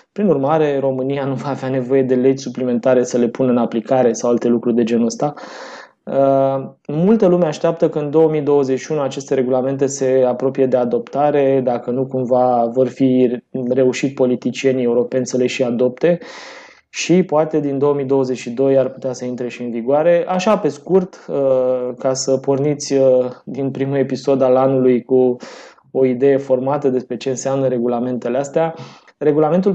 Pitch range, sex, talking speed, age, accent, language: 125-145 Hz, male, 155 wpm, 20-39, native, Romanian